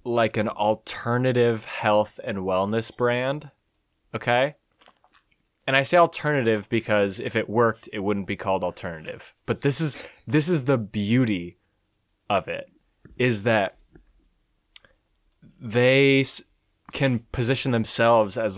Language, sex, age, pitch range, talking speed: English, male, 20-39, 105-135 Hz, 120 wpm